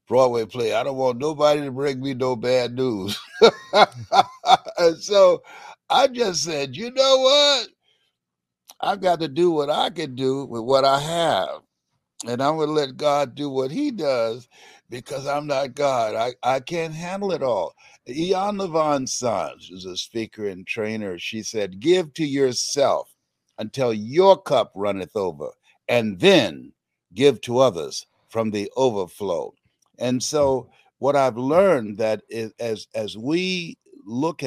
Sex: male